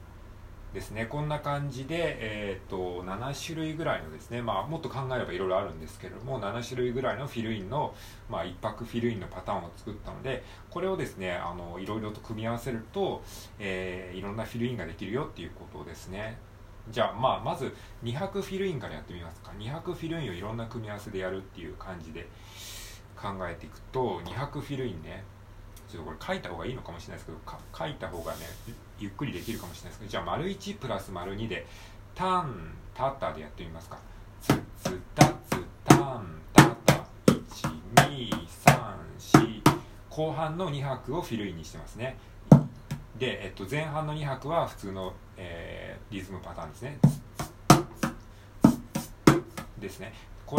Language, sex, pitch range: Japanese, male, 95-130 Hz